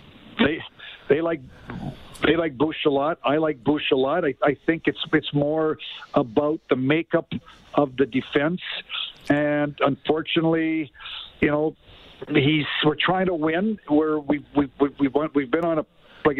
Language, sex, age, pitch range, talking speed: English, male, 50-69, 145-165 Hz, 165 wpm